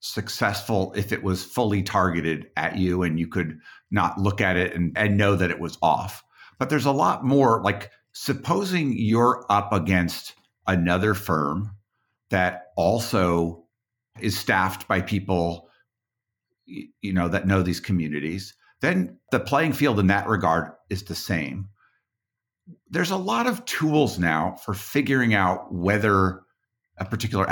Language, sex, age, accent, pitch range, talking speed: English, male, 50-69, American, 95-115 Hz, 150 wpm